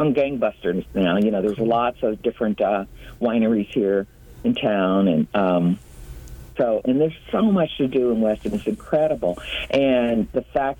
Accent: American